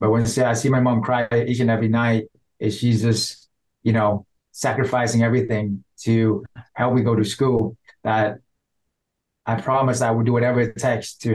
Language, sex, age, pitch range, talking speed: English, male, 20-39, 110-125 Hz, 180 wpm